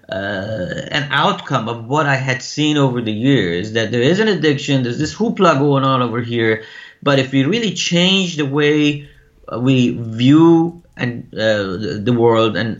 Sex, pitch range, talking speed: male, 120-165 Hz, 175 wpm